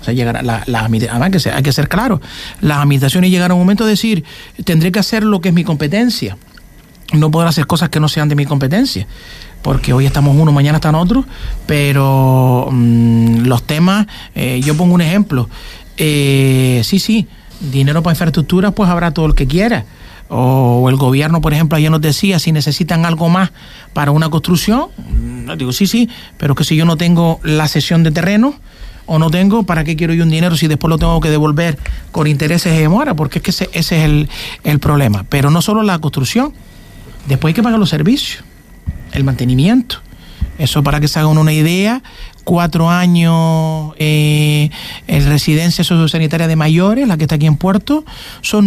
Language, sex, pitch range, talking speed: Spanish, male, 145-180 Hz, 200 wpm